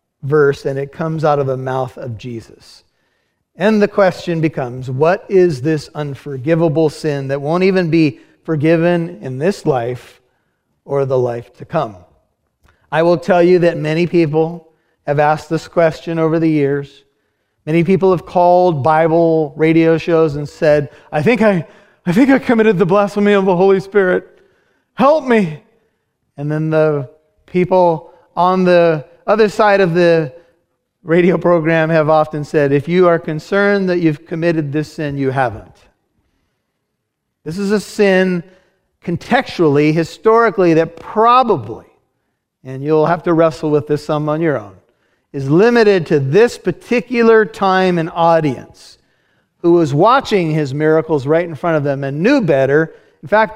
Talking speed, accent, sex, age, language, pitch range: 155 wpm, American, male, 30-49, English, 150-185 Hz